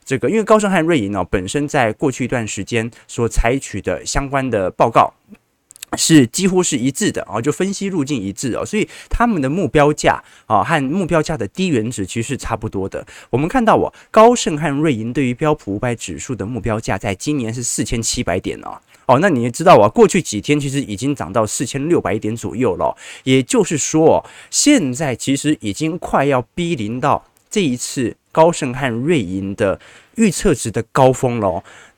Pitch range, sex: 110-160 Hz, male